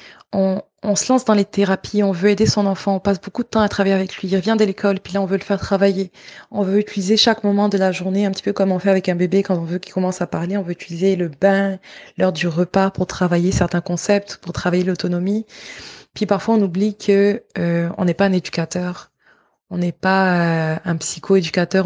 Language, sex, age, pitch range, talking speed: French, female, 20-39, 175-200 Hz, 240 wpm